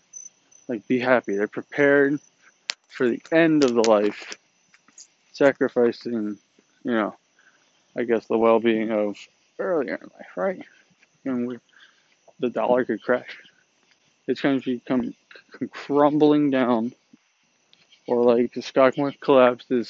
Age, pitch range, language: 20-39, 120-145 Hz, English